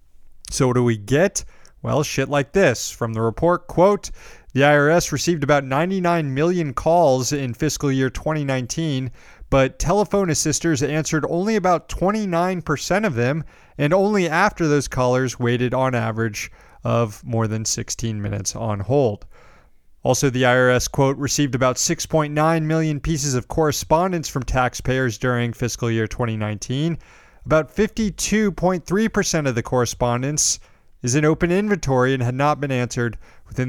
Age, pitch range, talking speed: 30-49, 120-160 Hz, 145 wpm